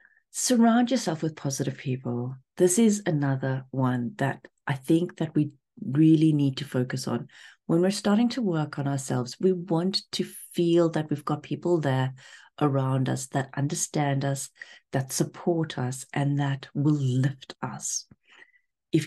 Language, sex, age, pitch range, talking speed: English, female, 40-59, 135-180 Hz, 155 wpm